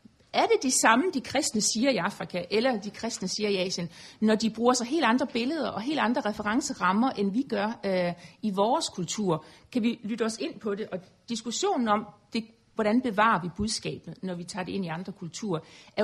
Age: 60-79